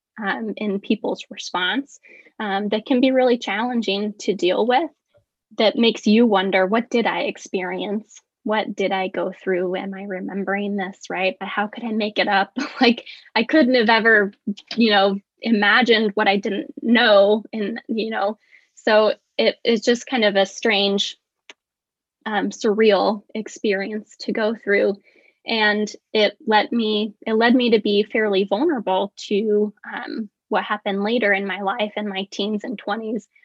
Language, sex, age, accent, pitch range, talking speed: English, female, 10-29, American, 195-230 Hz, 165 wpm